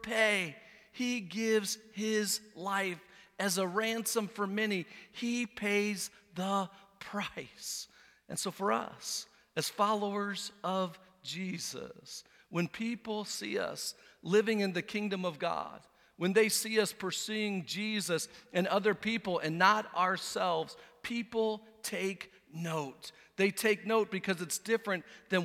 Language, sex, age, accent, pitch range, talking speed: English, male, 50-69, American, 190-220 Hz, 125 wpm